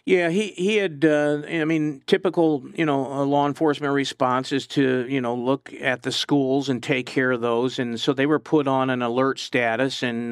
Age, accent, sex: 50-69, American, male